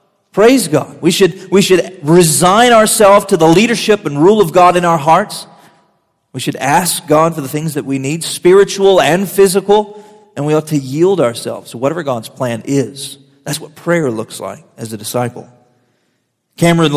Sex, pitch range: male, 140-185 Hz